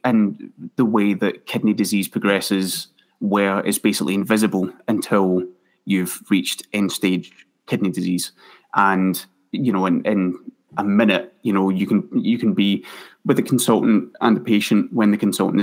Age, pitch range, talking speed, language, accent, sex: 20-39, 95-110 Hz, 155 wpm, English, British, male